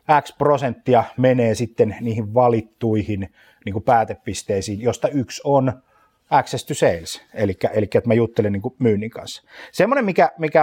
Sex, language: male, Finnish